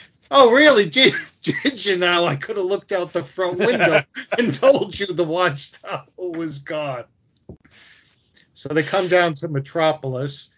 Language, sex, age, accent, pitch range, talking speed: English, male, 40-59, American, 120-145 Hz, 155 wpm